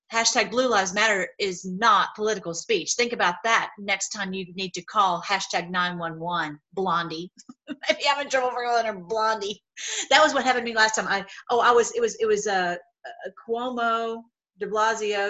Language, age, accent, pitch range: English, 40-59, American, 190-245 Hz